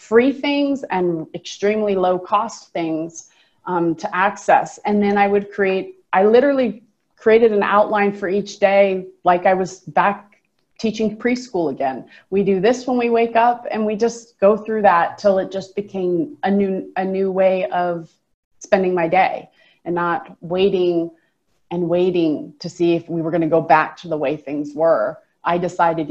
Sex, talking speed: female, 175 wpm